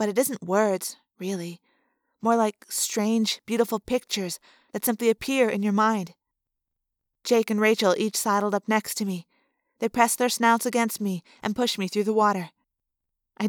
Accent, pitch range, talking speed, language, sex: American, 200-230 Hz, 170 wpm, English, female